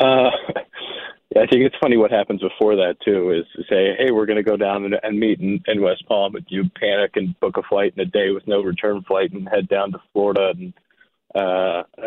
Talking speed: 235 wpm